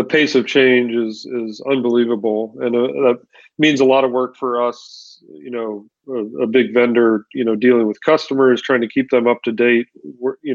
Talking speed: 210 wpm